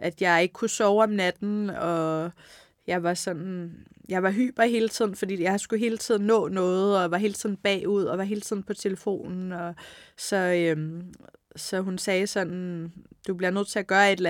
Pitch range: 175-210 Hz